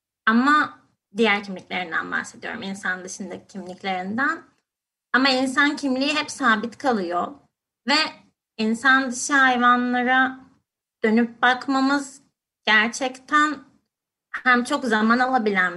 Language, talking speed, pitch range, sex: Turkish, 90 wpm, 210-260 Hz, female